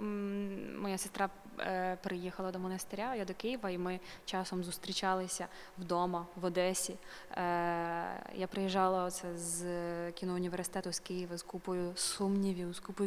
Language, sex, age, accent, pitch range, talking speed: Ukrainian, female, 20-39, native, 185-205 Hz, 120 wpm